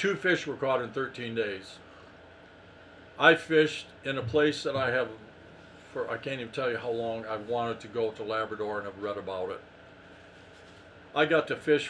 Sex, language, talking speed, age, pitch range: male, English, 190 wpm, 50-69, 95-125 Hz